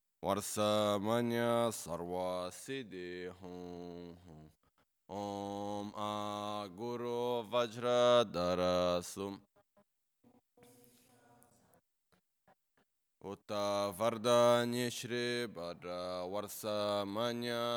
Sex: male